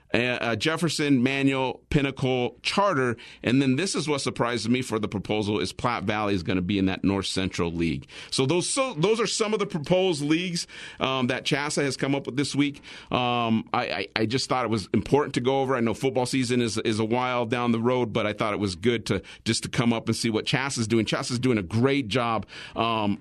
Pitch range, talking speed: 110-145 Hz, 240 wpm